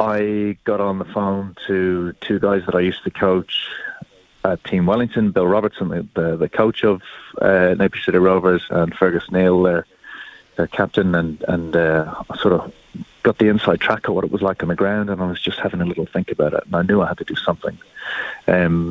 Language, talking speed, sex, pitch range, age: English, 220 wpm, male, 90-105 Hz, 30-49